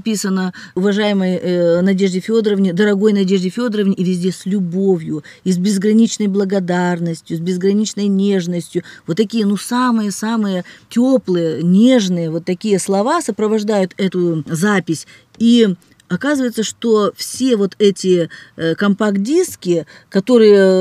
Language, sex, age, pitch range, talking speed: Russian, female, 40-59, 185-235 Hz, 110 wpm